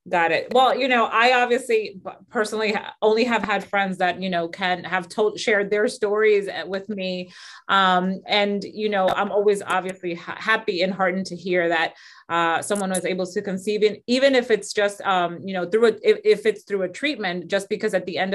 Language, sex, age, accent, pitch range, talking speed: English, female, 30-49, American, 180-215 Hz, 210 wpm